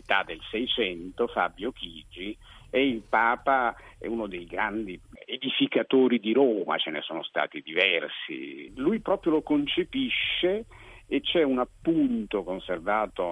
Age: 50-69